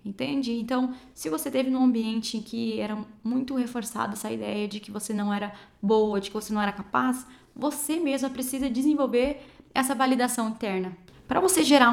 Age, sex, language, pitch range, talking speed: 10-29, female, Portuguese, 205-255 Hz, 180 wpm